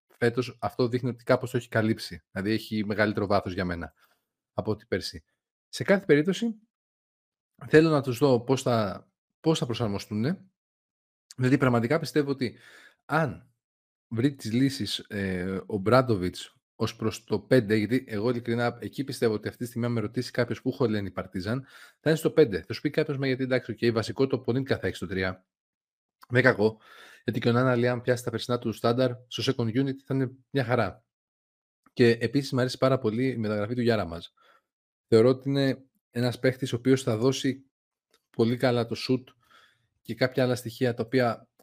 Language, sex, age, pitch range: Greek, male, 30-49, 110-130 Hz